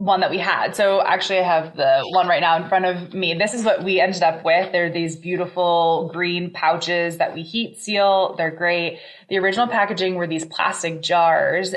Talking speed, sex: 210 wpm, female